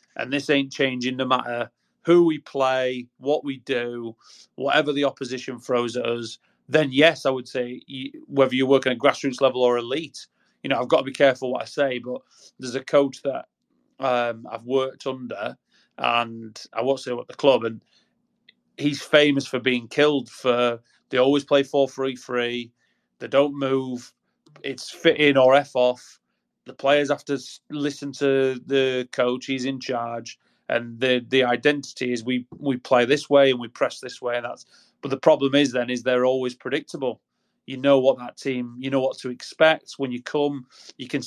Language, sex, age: English, male, 30-49